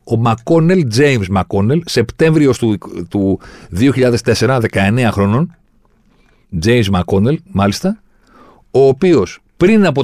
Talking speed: 95 wpm